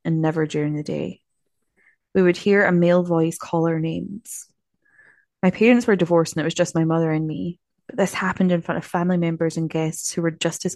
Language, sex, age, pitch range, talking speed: English, female, 20-39, 165-190 Hz, 225 wpm